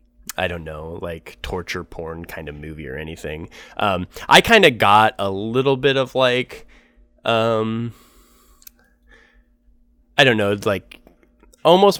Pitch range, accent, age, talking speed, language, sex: 85-120 Hz, American, 20-39, 135 wpm, English, male